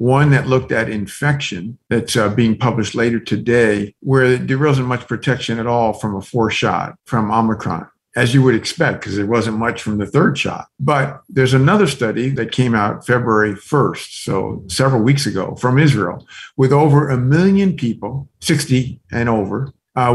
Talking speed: 180 wpm